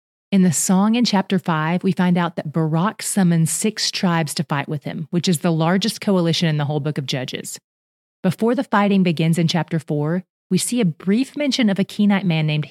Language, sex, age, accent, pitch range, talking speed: English, female, 30-49, American, 155-200 Hz, 215 wpm